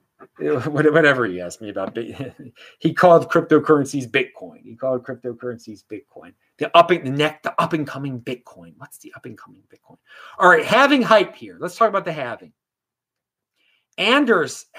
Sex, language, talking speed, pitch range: male, English, 160 wpm, 130-190 Hz